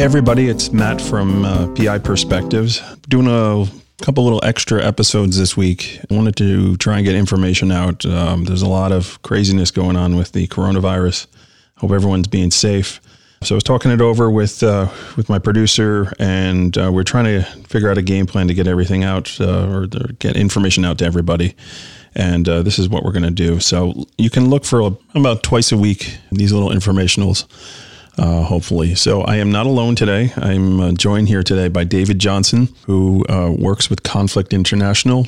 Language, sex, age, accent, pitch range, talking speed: English, male, 30-49, American, 90-105 Hz, 190 wpm